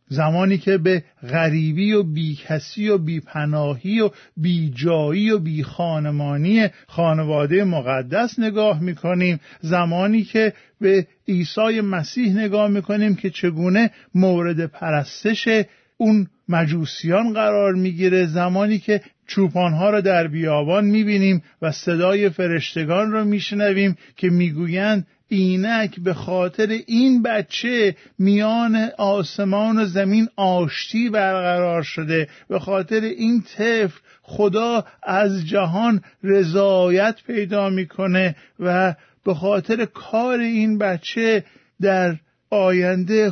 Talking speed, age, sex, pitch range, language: 105 wpm, 50-69, male, 170-210 Hz, Persian